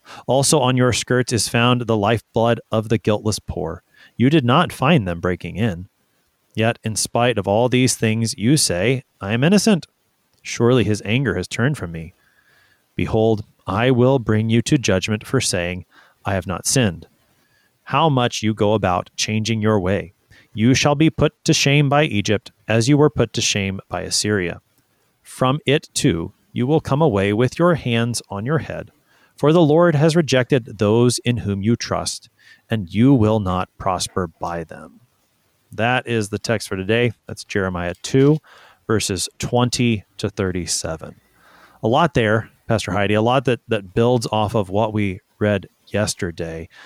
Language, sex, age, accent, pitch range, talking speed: English, male, 30-49, American, 100-130 Hz, 170 wpm